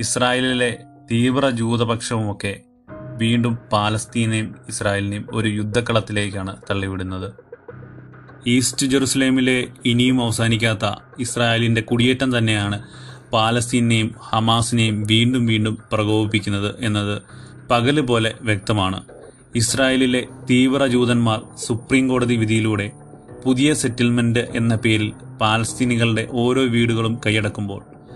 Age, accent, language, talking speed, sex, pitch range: 30-49, native, Malayalam, 80 wpm, male, 110-125 Hz